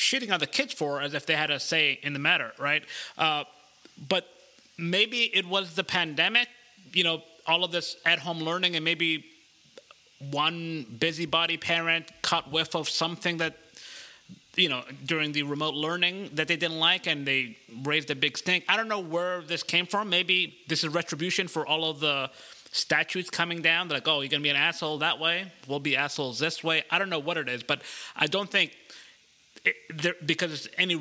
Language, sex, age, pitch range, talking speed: English, male, 30-49, 150-180 Hz, 195 wpm